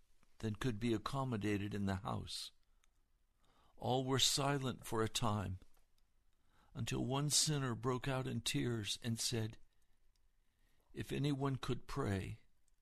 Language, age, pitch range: English, 60-79, 100-125 Hz